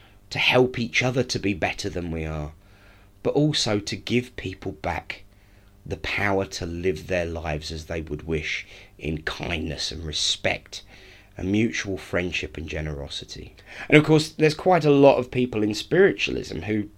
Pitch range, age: 95-125 Hz, 30-49